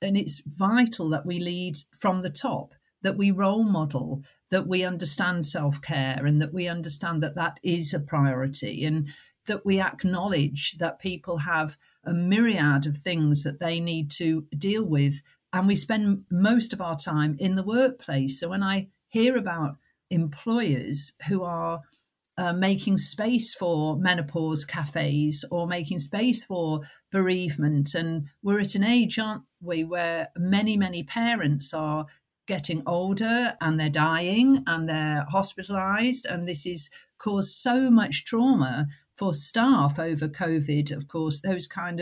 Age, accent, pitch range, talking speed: 50-69, British, 155-200 Hz, 155 wpm